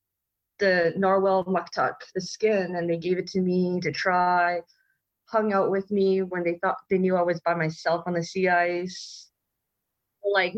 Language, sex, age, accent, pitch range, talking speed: English, female, 20-39, American, 175-220 Hz, 175 wpm